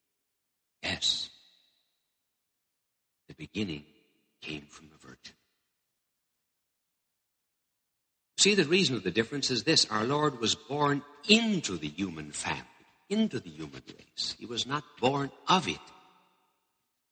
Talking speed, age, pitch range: 115 wpm, 60-79, 95-145 Hz